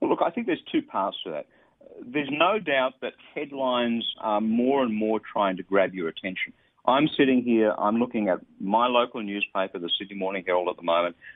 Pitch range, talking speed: 105-155 Hz, 200 wpm